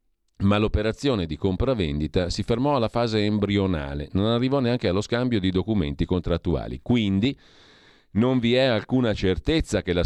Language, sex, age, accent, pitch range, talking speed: Italian, male, 40-59, native, 90-115 Hz, 150 wpm